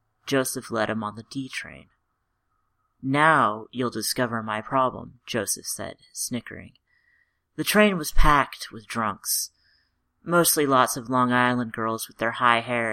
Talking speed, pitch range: 140 wpm, 110-135 Hz